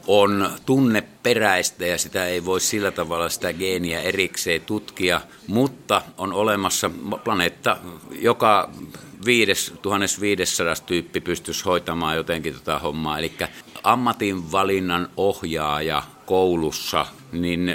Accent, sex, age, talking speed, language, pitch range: native, male, 50-69, 95 wpm, Finnish, 80-95 Hz